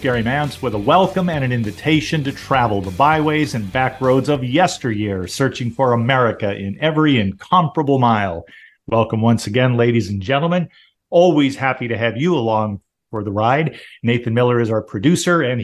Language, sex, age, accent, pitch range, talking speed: English, male, 50-69, American, 115-155 Hz, 175 wpm